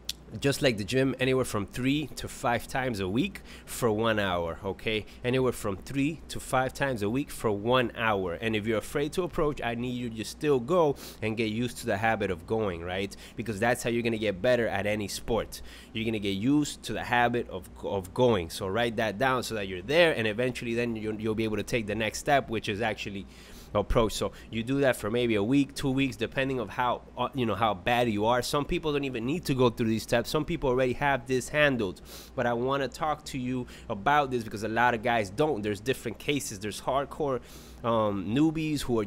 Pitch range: 110-130 Hz